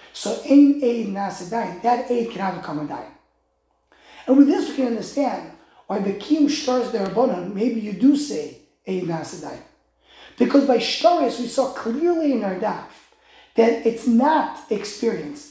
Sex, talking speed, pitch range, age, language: male, 160 wpm, 215-280 Hz, 30-49, English